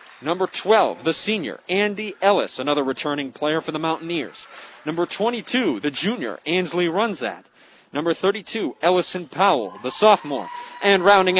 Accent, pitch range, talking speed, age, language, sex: American, 140-180 Hz, 135 wpm, 30-49, English, male